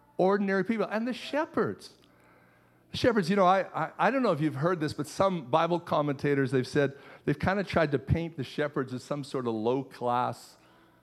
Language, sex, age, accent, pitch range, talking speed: English, male, 50-69, American, 135-180 Hz, 195 wpm